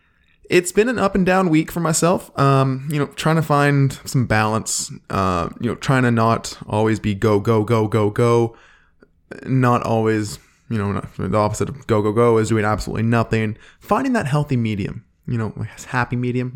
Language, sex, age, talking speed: English, male, 20-39, 190 wpm